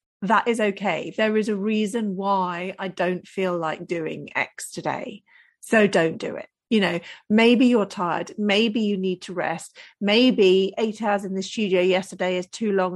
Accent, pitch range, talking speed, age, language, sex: British, 190-265 Hz, 180 wpm, 40-59, English, female